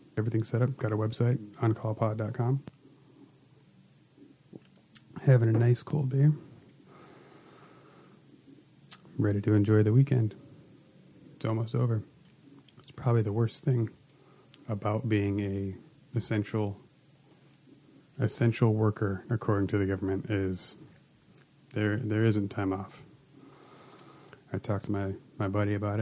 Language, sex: English, male